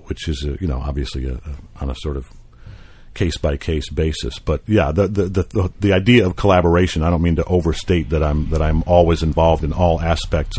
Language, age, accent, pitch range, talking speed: English, 50-69, American, 75-90 Hz, 215 wpm